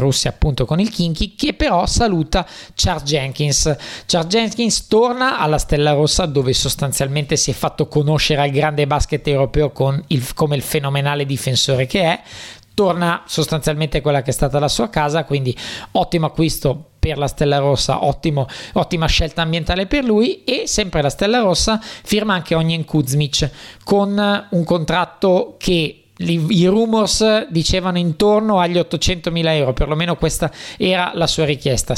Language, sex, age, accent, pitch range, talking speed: Italian, male, 20-39, native, 135-175 Hz, 155 wpm